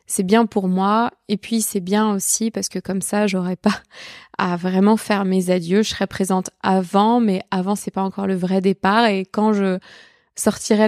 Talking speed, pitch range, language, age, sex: 200 wpm, 190-220 Hz, French, 20-39, female